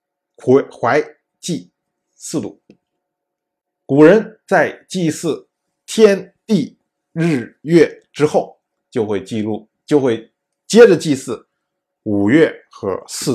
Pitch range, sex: 135-220 Hz, male